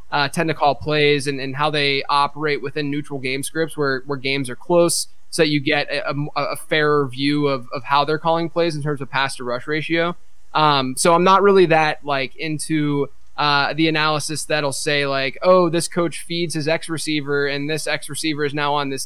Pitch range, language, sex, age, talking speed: 145-175 Hz, English, male, 20-39, 215 wpm